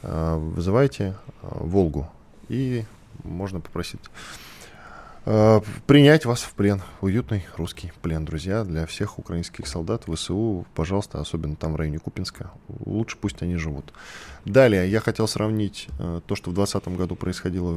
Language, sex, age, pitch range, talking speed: Russian, male, 10-29, 85-110 Hz, 140 wpm